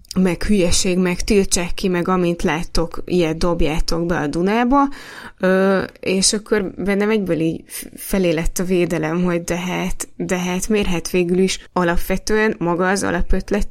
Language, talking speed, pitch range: Hungarian, 145 wpm, 170-205 Hz